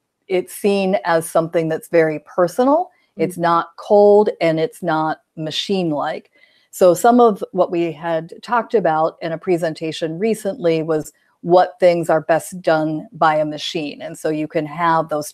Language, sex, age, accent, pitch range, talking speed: English, female, 50-69, American, 160-190 Hz, 160 wpm